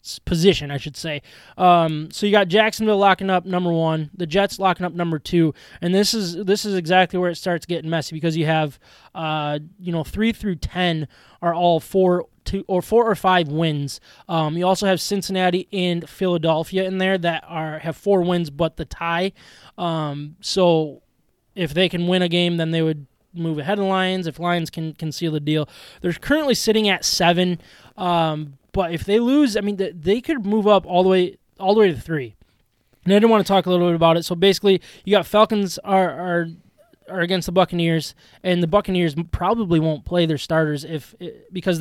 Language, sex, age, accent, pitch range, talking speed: English, male, 20-39, American, 160-190 Hz, 205 wpm